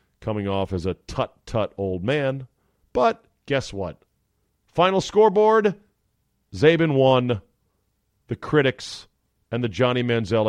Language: English